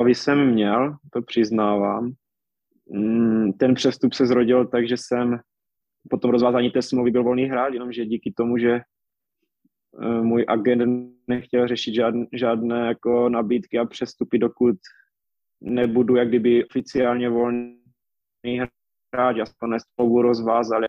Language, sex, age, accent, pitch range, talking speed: Czech, male, 20-39, native, 115-125 Hz, 120 wpm